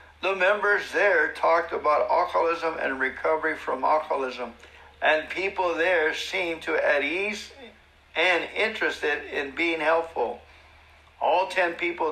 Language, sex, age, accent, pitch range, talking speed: English, male, 60-79, American, 155-205 Hz, 125 wpm